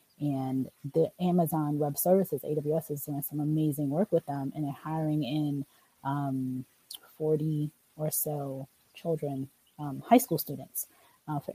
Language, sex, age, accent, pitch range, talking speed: English, female, 20-39, American, 145-175 Hz, 145 wpm